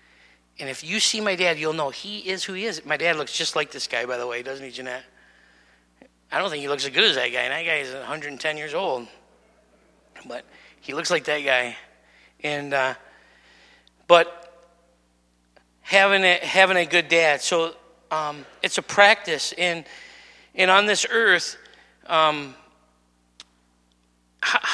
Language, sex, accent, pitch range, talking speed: English, male, American, 140-195 Hz, 170 wpm